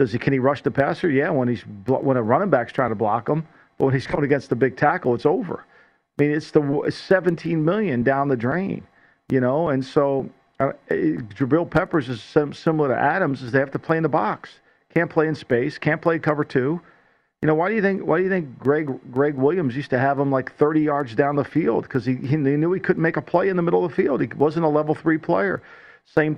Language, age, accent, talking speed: English, 50-69, American, 250 wpm